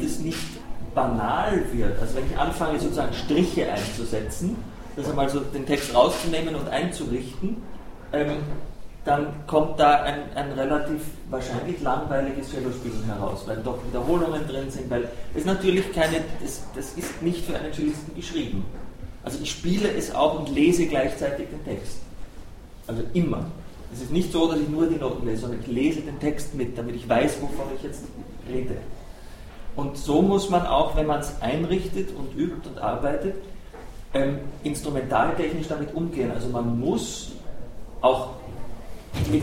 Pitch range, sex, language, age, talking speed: 125-155 Hz, male, German, 30-49, 155 wpm